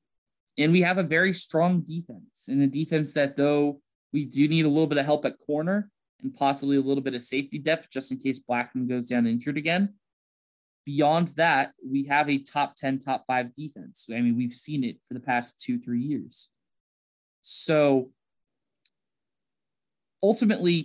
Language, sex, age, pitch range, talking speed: English, male, 20-39, 130-160 Hz, 175 wpm